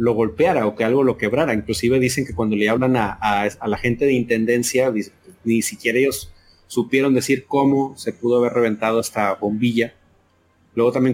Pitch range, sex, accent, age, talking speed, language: 110-140 Hz, male, Mexican, 30-49, 185 wpm, Spanish